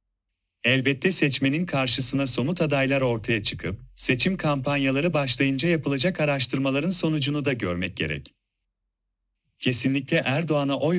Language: Turkish